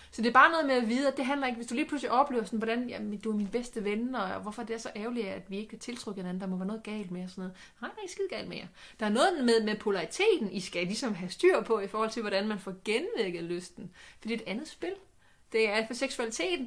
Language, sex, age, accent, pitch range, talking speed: Danish, female, 30-49, native, 200-260 Hz, 300 wpm